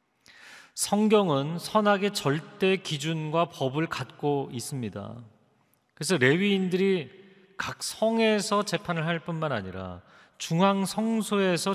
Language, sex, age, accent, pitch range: Korean, male, 40-59, native, 115-180 Hz